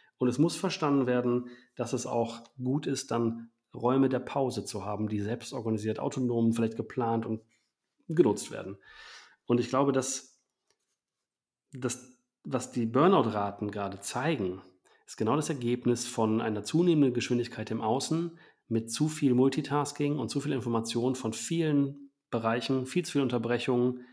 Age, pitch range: 40-59, 115-145 Hz